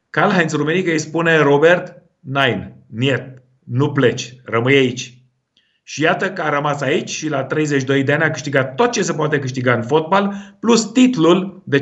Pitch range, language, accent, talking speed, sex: 135-175 Hz, Romanian, native, 180 wpm, male